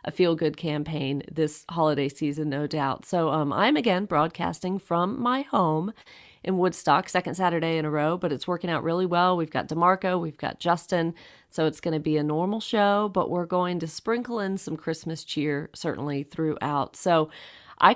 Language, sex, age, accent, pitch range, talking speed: English, female, 40-59, American, 160-195 Hz, 185 wpm